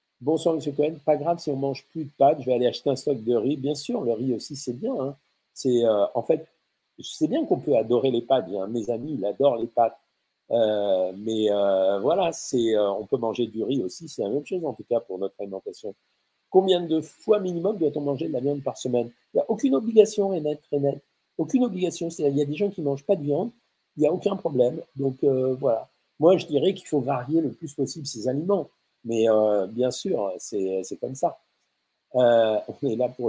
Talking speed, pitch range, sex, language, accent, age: 235 wpm, 120-155 Hz, male, French, French, 50-69